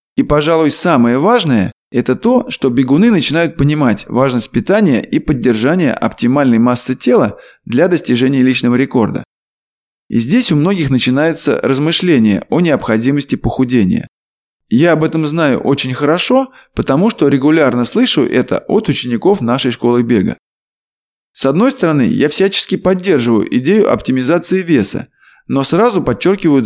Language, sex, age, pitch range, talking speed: Russian, male, 20-39, 125-175 Hz, 130 wpm